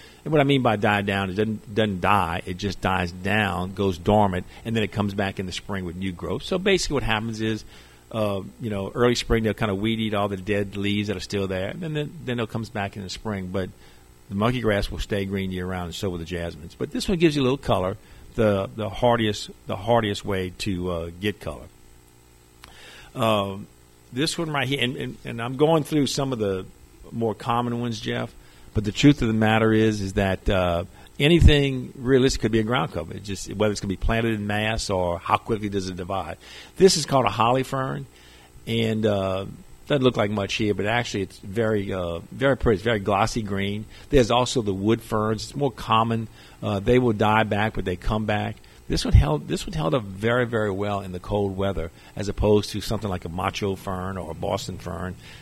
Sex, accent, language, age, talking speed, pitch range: male, American, English, 50-69, 225 wpm, 95-115 Hz